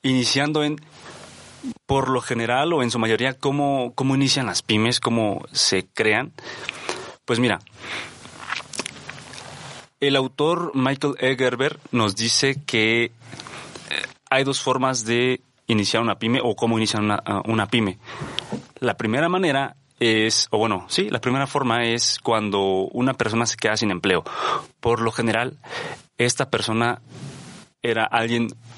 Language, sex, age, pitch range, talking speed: Spanish, male, 30-49, 115-135 Hz, 135 wpm